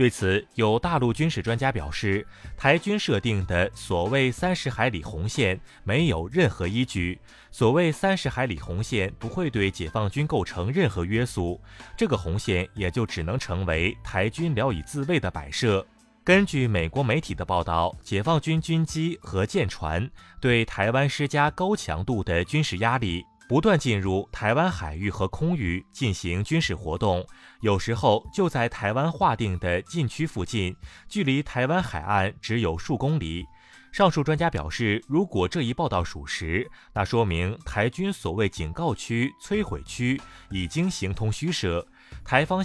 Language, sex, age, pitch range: Chinese, male, 30-49, 90-140 Hz